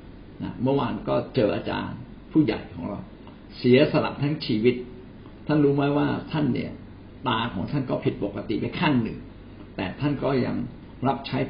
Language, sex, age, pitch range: Thai, male, 60-79, 100-135 Hz